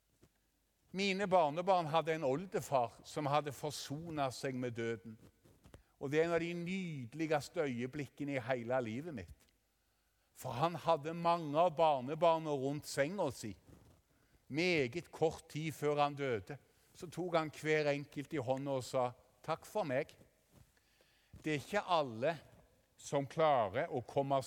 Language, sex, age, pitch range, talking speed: English, male, 50-69, 135-175 Hz, 145 wpm